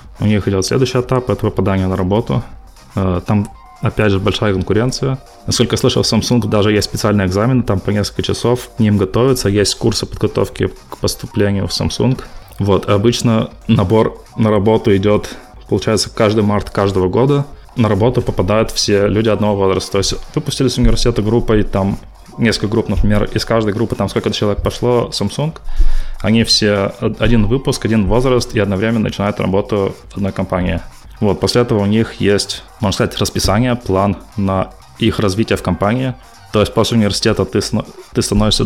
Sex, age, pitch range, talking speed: male, 20-39, 100-115 Hz, 165 wpm